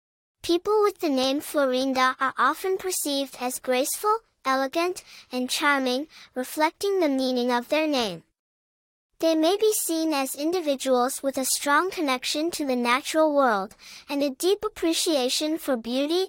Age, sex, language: 10-29, male, English